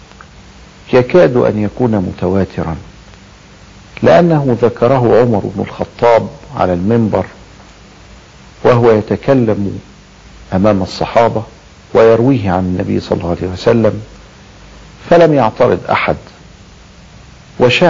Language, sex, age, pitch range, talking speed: Arabic, male, 50-69, 90-115 Hz, 85 wpm